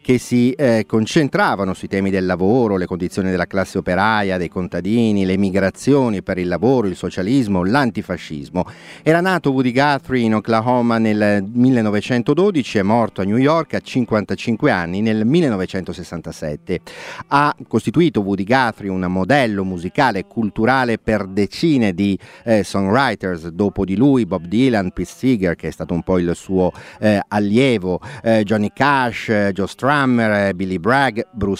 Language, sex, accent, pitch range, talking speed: Italian, male, native, 95-130 Hz, 150 wpm